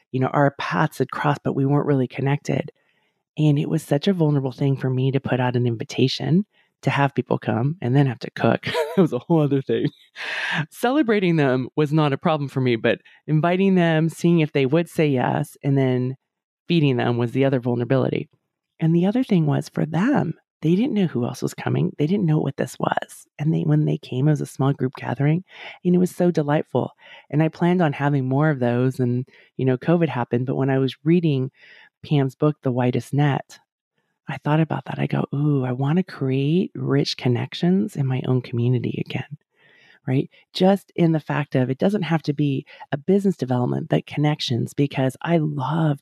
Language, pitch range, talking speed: English, 130-165 Hz, 210 wpm